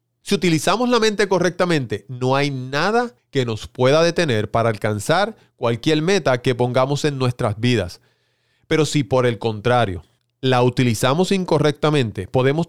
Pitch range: 120-155 Hz